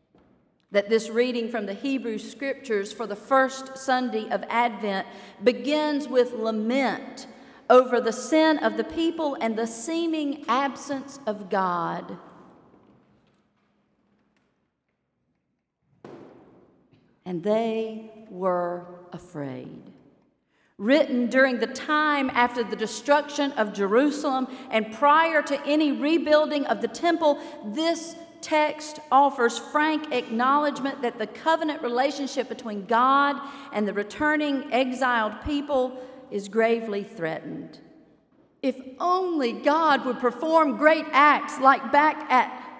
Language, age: English, 40-59